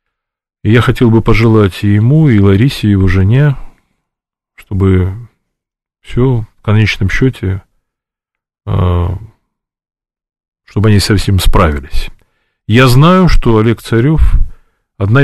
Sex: male